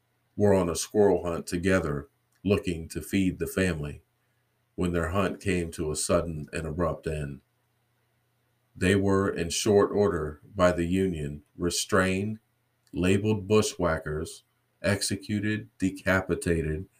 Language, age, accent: English, 50-69, American